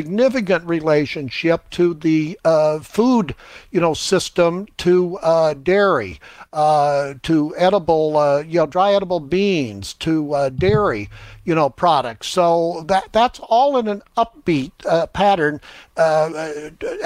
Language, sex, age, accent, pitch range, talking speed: English, male, 60-79, American, 155-200 Hz, 130 wpm